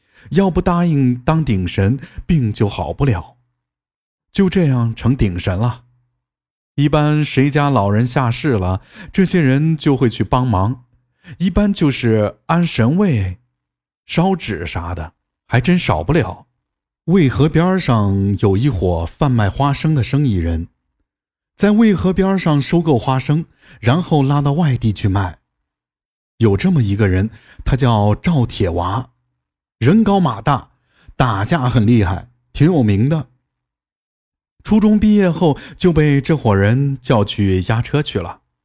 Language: Chinese